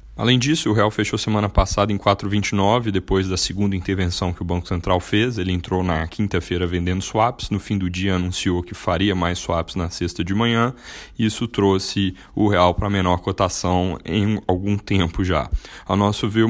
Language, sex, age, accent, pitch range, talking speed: Portuguese, male, 10-29, Brazilian, 90-105 Hz, 185 wpm